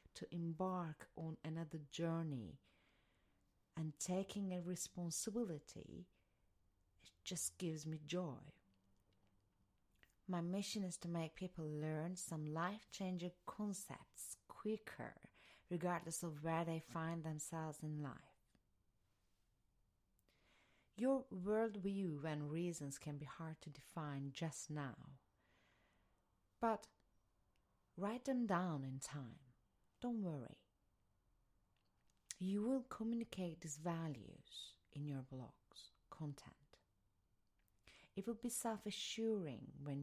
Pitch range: 135-180 Hz